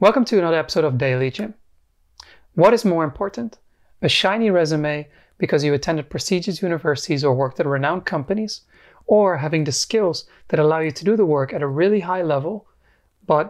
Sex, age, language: male, 30-49, English